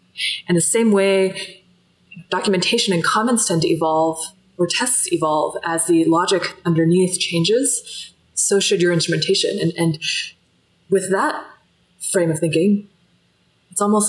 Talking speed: 130 wpm